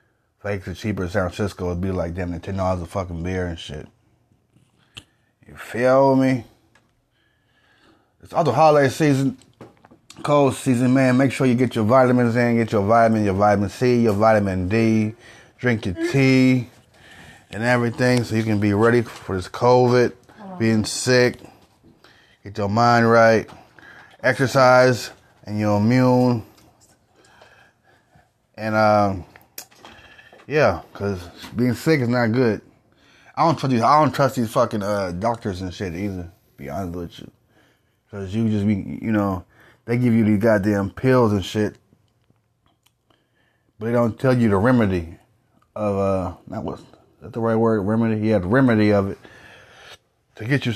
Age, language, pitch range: 20-39, English, 105-125 Hz